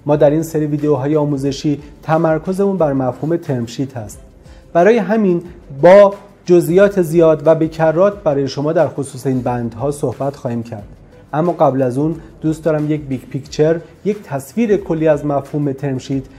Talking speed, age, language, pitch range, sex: 155 wpm, 30-49, Persian, 135-180 Hz, male